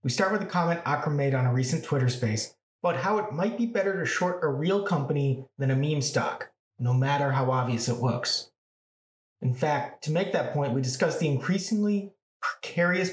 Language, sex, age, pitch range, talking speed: English, male, 30-49, 135-180 Hz, 200 wpm